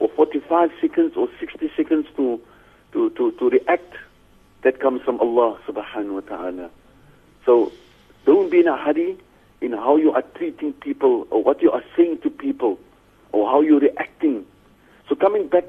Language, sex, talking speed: English, male, 170 wpm